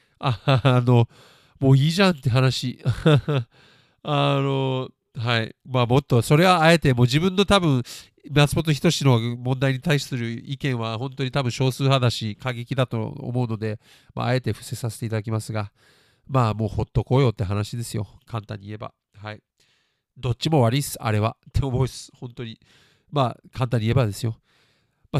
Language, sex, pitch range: Japanese, male, 120-150 Hz